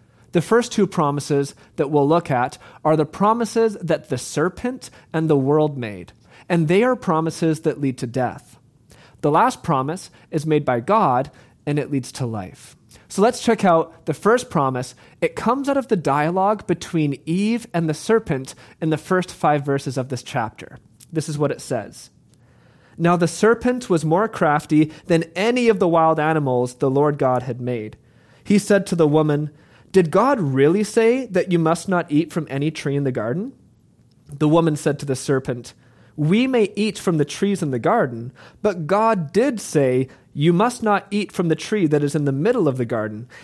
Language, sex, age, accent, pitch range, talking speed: English, male, 30-49, American, 135-195 Hz, 195 wpm